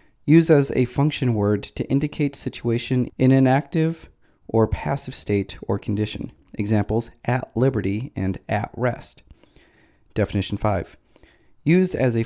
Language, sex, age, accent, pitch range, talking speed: English, male, 30-49, American, 105-135 Hz, 130 wpm